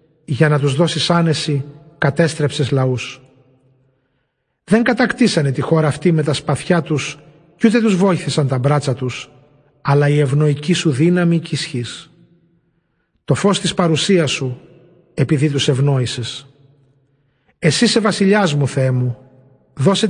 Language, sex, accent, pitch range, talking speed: Greek, male, native, 140-175 Hz, 130 wpm